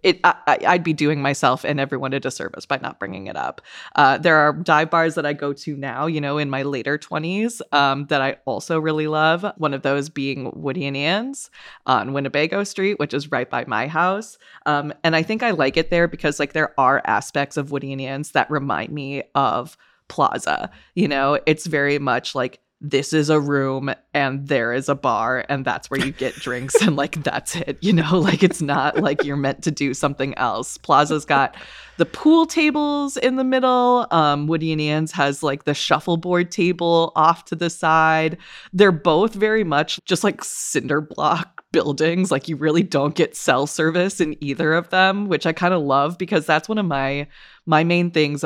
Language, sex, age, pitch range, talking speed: English, female, 20-39, 140-175 Hz, 205 wpm